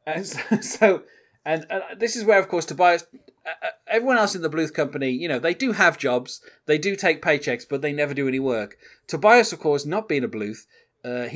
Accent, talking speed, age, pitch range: British, 205 wpm, 30-49, 120-155 Hz